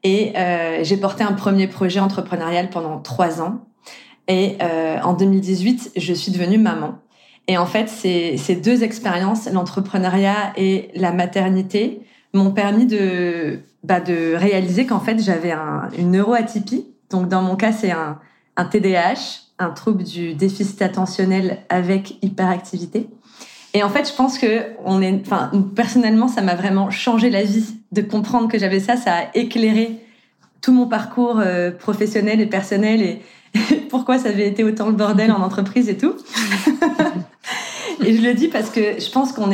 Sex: female